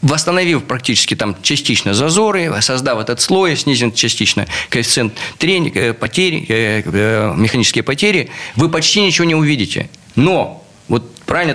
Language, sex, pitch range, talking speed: Russian, male, 115-160 Hz, 110 wpm